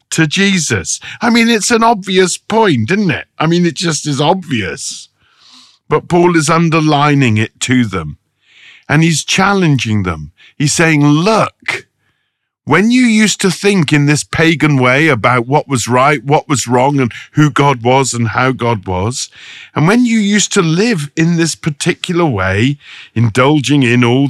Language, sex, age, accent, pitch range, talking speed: English, male, 50-69, British, 115-165 Hz, 165 wpm